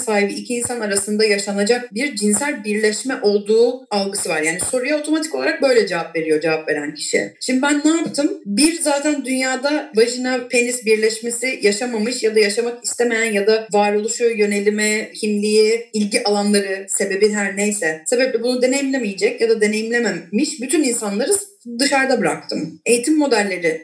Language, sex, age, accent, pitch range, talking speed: Turkish, female, 40-59, native, 200-255 Hz, 145 wpm